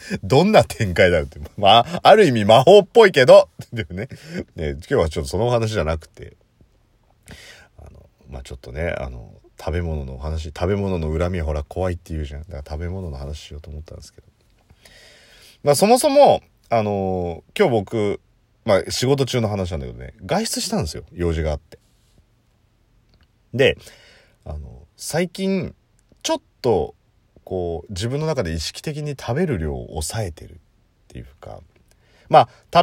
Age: 40-59